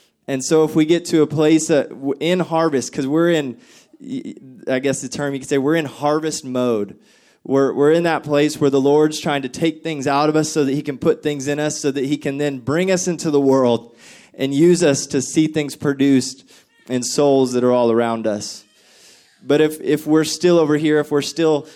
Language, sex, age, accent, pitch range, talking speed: English, male, 20-39, American, 130-155 Hz, 225 wpm